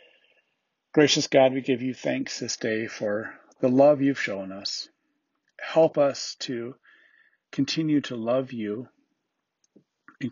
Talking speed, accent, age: 130 wpm, American, 40-59